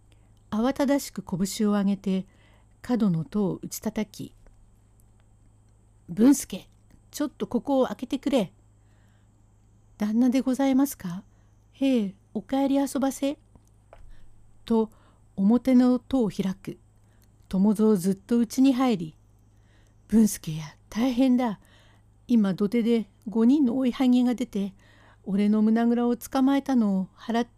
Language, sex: Japanese, female